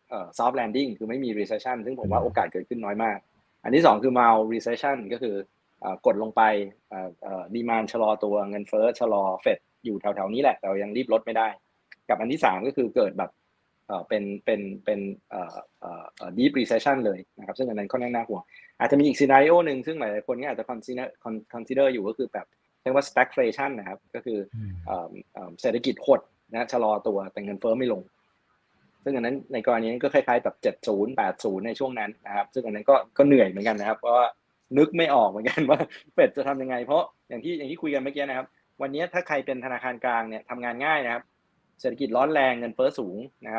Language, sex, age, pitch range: Thai, male, 20-39, 105-135 Hz